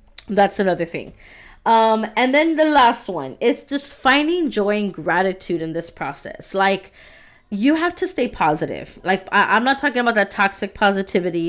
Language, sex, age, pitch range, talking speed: English, female, 20-39, 175-215 Hz, 170 wpm